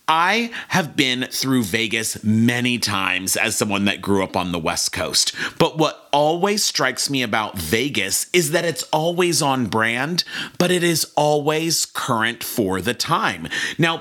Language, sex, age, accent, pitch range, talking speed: English, male, 30-49, American, 125-170 Hz, 165 wpm